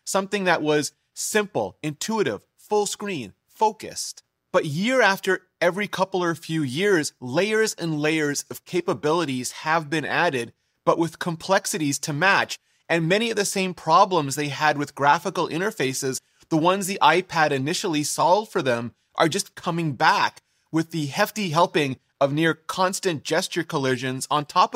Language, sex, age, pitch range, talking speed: English, male, 30-49, 140-185 Hz, 155 wpm